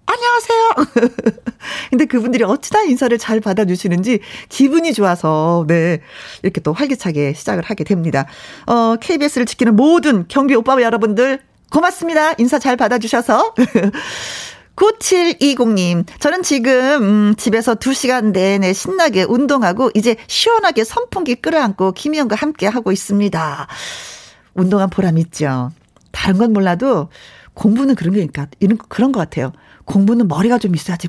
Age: 40-59